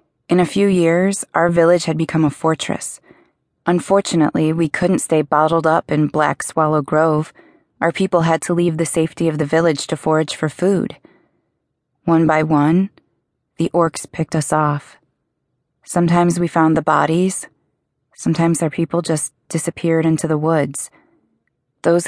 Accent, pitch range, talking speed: American, 150-170 Hz, 150 wpm